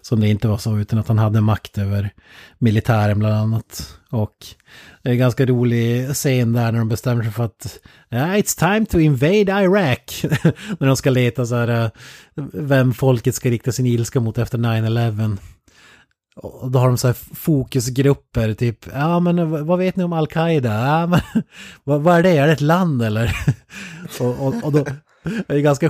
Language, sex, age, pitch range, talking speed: Swedish, male, 30-49, 110-140 Hz, 190 wpm